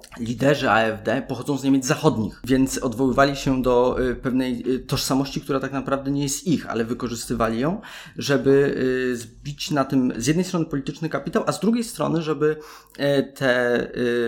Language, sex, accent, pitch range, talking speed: Polish, male, native, 120-145 Hz, 150 wpm